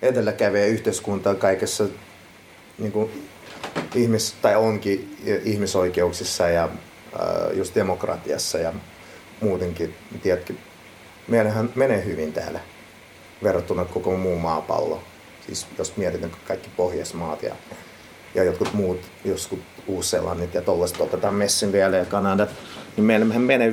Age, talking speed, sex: 30-49, 105 wpm, male